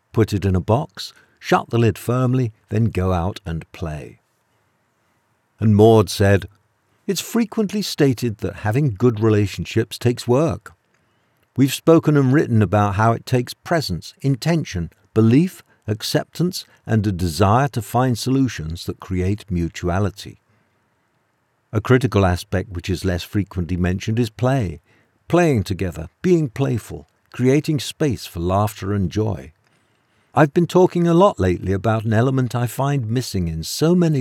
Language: English